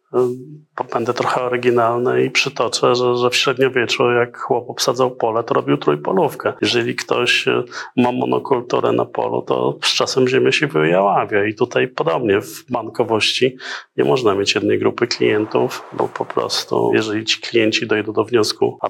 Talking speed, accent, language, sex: 160 wpm, native, Polish, male